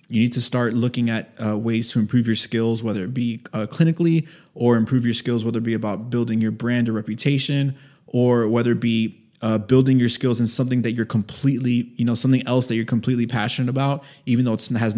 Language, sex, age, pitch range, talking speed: English, male, 20-39, 110-125 Hz, 225 wpm